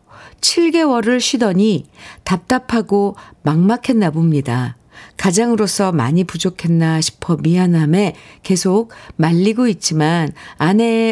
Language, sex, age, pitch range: Korean, female, 50-69, 150-205 Hz